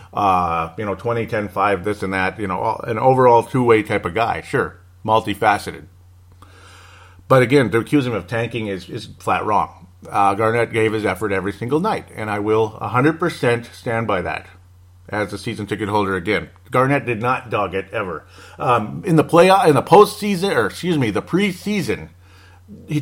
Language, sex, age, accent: English, male, 40-59, American